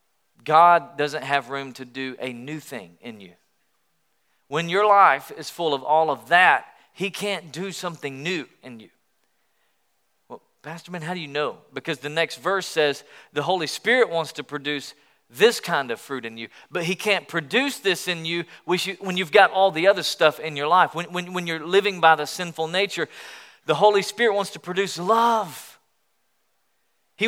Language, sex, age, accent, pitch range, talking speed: English, male, 40-59, American, 150-200 Hz, 185 wpm